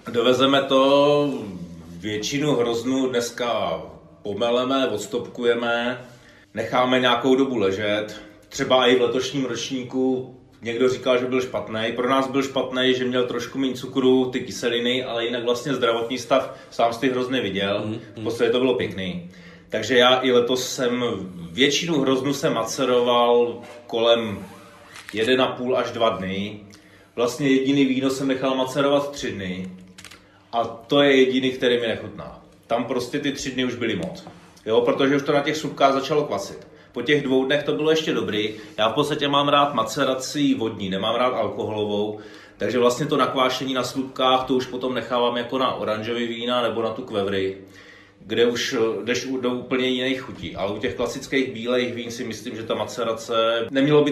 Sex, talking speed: male, 165 wpm